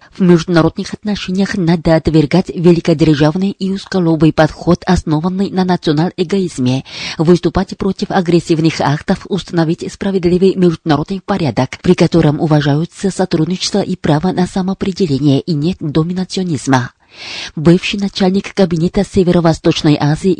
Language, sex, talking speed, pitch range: Russian, female, 105 wpm, 160-190 Hz